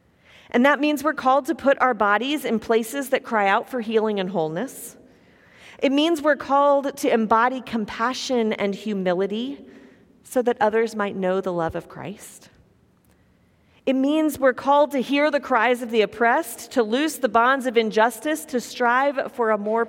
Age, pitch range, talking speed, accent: 40-59, 220-280 Hz, 175 wpm, American